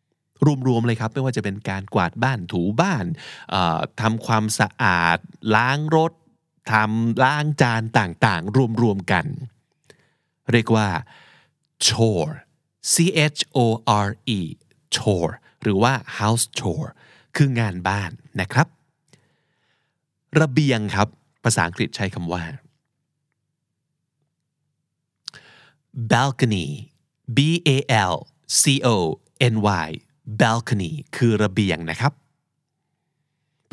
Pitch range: 110-150 Hz